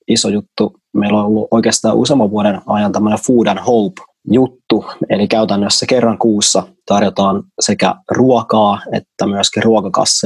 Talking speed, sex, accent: 135 wpm, male, native